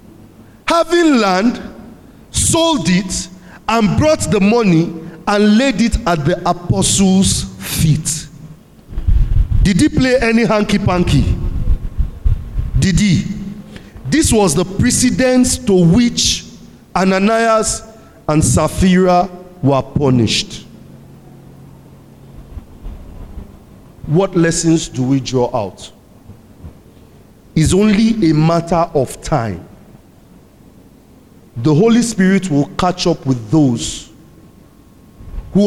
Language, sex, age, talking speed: English, male, 50-69, 90 wpm